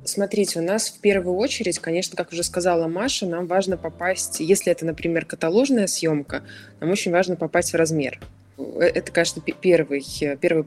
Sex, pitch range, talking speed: female, 150-175 Hz, 165 wpm